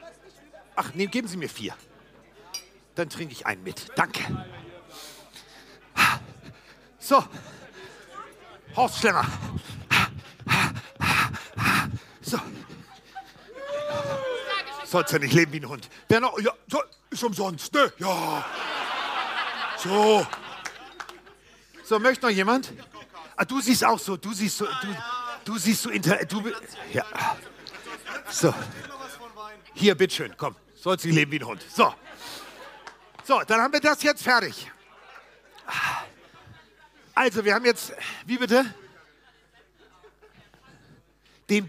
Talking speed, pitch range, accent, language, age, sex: 105 wpm, 160-240 Hz, German, German, 50-69, male